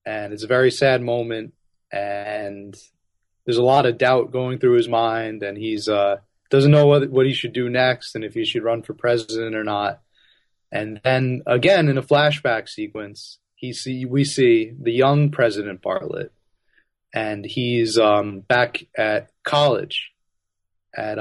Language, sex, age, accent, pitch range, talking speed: English, male, 30-49, American, 105-135 Hz, 165 wpm